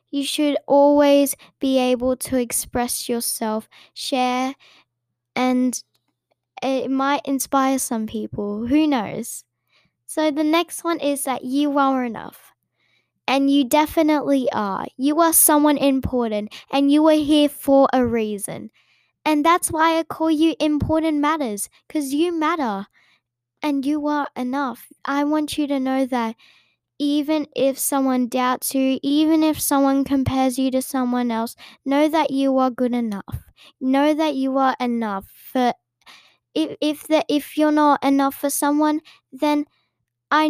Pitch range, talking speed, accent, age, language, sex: 245-295 Hz, 145 wpm, Australian, 10-29, English, female